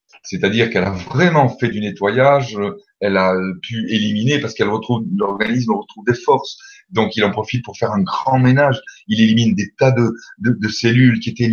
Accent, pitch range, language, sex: French, 105-160 Hz, French, male